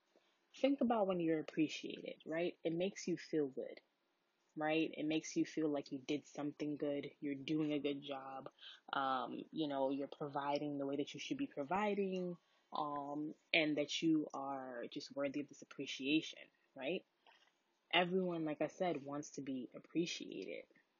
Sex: female